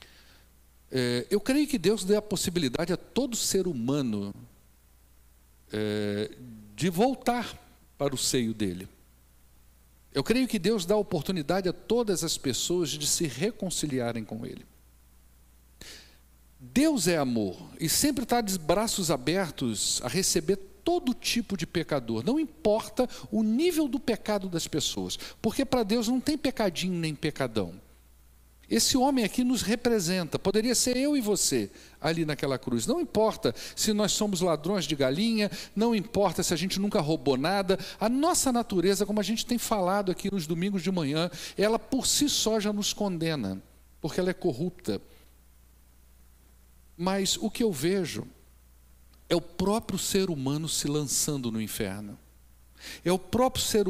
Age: 60-79